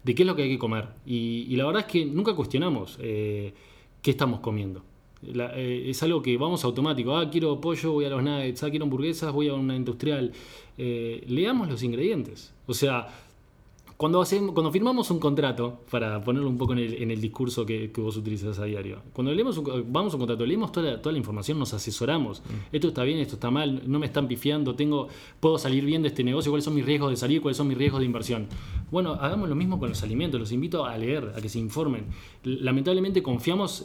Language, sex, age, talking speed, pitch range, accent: Spanish, male, 20-39, 225 wpm, 115-150 Hz, Argentinian